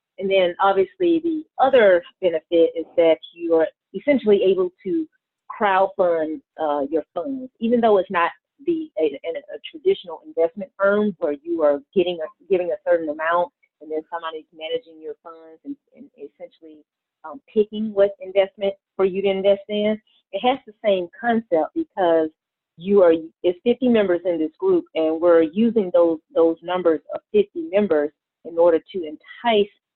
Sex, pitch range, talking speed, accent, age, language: female, 165-235 Hz, 165 wpm, American, 30-49, English